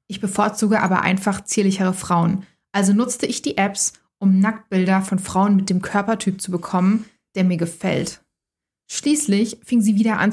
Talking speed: 165 wpm